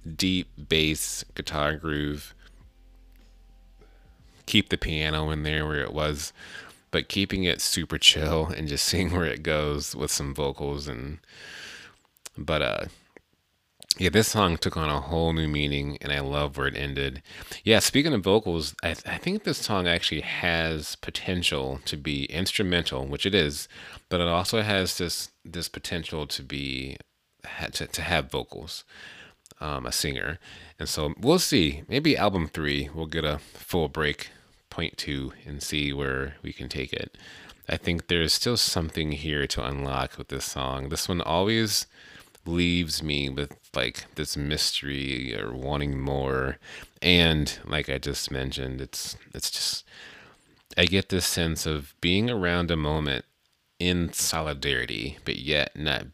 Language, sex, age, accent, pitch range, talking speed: English, male, 30-49, American, 70-85 Hz, 155 wpm